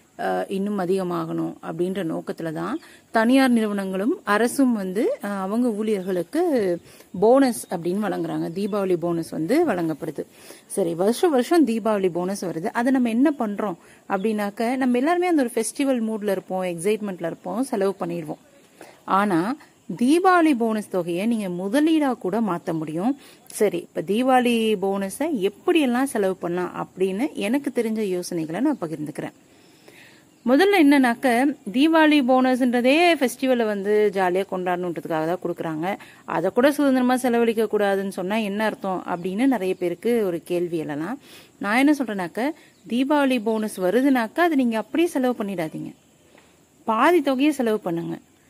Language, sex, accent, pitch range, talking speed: Tamil, female, native, 185-260 Hz, 125 wpm